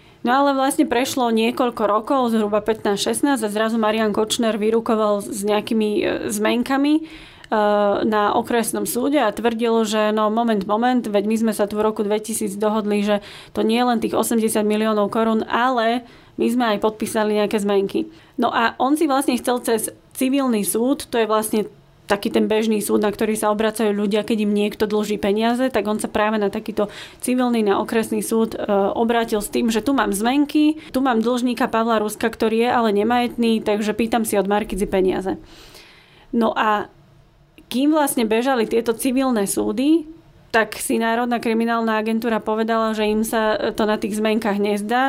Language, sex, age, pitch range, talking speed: Slovak, female, 30-49, 210-235 Hz, 175 wpm